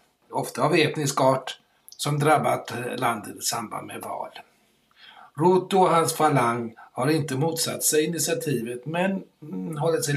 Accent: Swedish